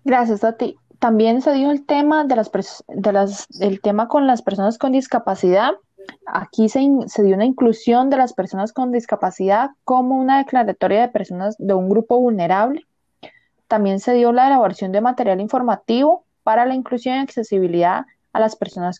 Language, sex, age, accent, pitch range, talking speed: Spanish, female, 20-39, Colombian, 195-245 Hz, 180 wpm